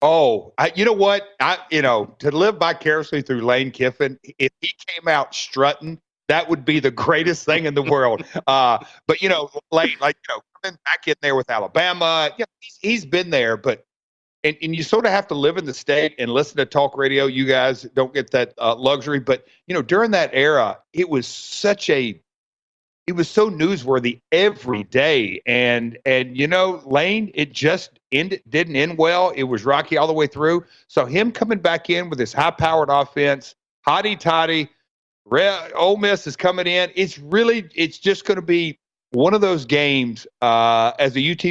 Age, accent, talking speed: 40-59, American, 200 wpm